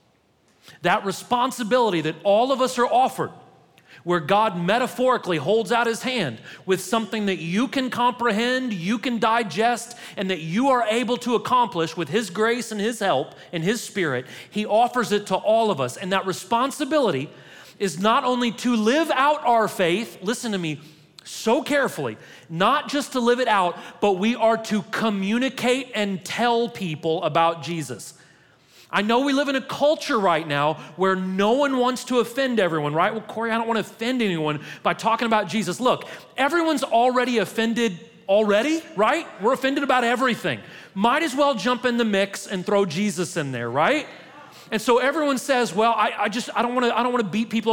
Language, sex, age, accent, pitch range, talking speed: English, male, 30-49, American, 190-250 Hz, 185 wpm